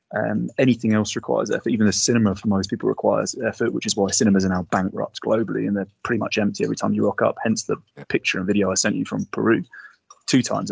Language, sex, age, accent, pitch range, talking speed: English, male, 20-39, British, 100-120 Hz, 240 wpm